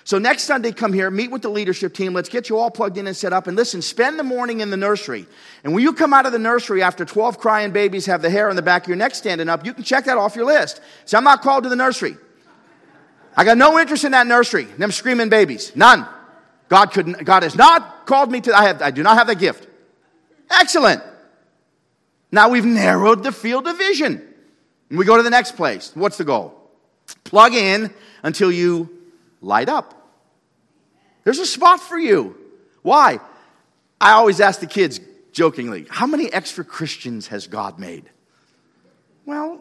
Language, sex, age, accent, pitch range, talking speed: English, male, 40-59, American, 175-260 Hz, 205 wpm